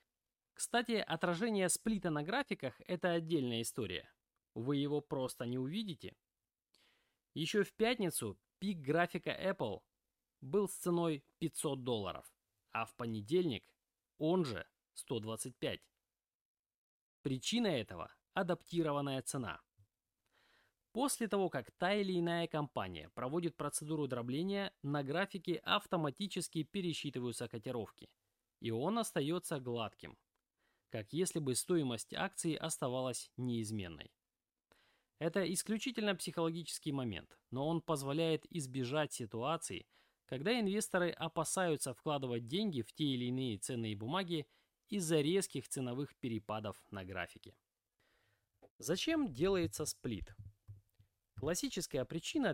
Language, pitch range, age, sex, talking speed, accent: Russian, 120-180 Hz, 20-39, male, 105 wpm, native